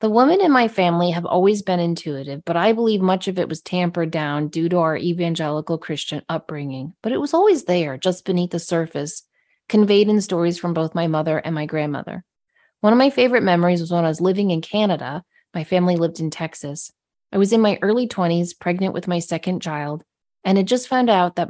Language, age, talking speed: English, 30-49, 215 wpm